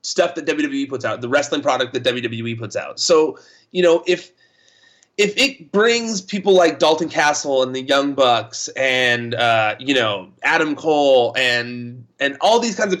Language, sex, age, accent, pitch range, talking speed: English, male, 30-49, American, 135-195 Hz, 180 wpm